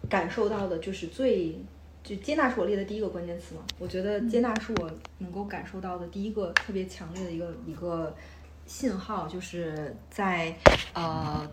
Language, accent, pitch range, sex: Chinese, native, 145-200 Hz, female